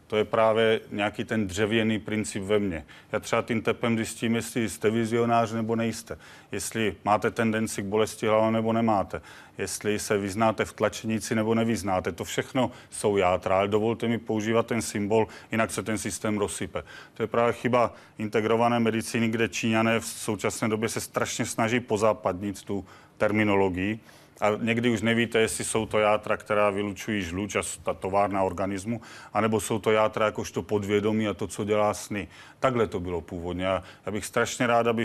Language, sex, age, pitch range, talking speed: Czech, male, 40-59, 105-115 Hz, 175 wpm